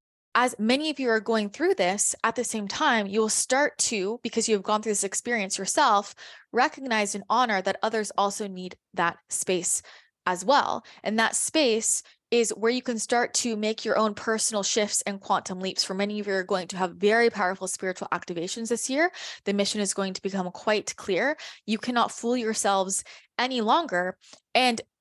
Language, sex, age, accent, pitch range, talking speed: English, female, 20-39, American, 195-235 Hz, 195 wpm